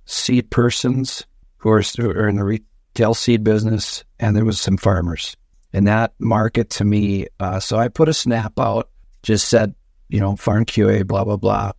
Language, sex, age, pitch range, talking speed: English, male, 50-69, 100-120 Hz, 190 wpm